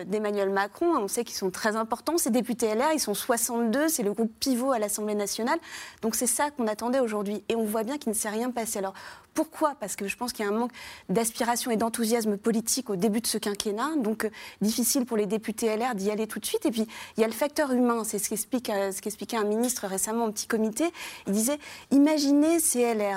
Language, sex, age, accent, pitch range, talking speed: French, female, 30-49, French, 215-265 Hz, 235 wpm